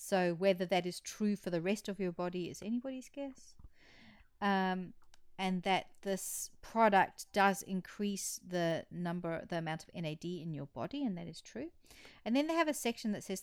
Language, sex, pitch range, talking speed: English, female, 175-230 Hz, 190 wpm